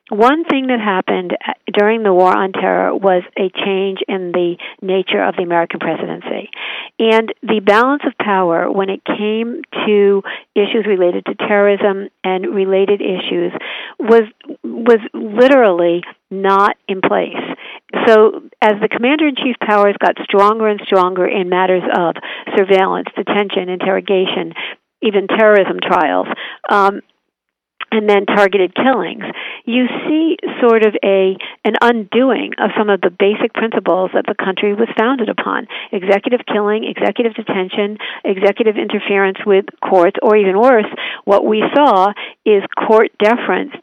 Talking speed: 135 wpm